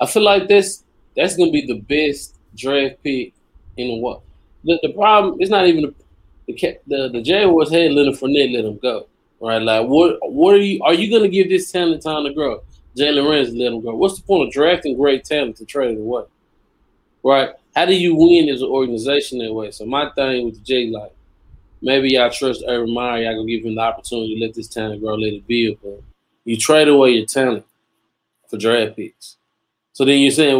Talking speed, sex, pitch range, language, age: 220 wpm, male, 115-155 Hz, English, 20-39